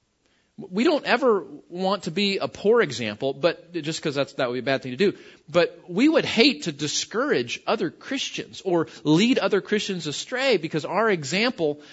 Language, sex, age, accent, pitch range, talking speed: English, male, 40-59, American, 155-220 Hz, 180 wpm